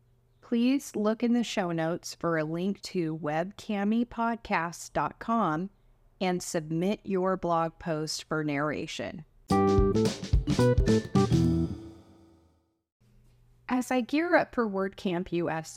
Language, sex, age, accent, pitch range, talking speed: English, female, 30-49, American, 150-210 Hz, 95 wpm